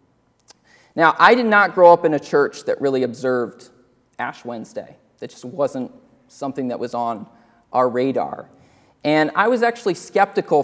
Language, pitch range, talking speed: English, 135-205 Hz, 160 wpm